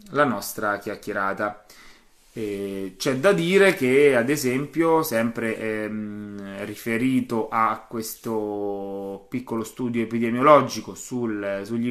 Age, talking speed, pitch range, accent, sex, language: 20-39, 100 wpm, 110-140 Hz, native, male, Italian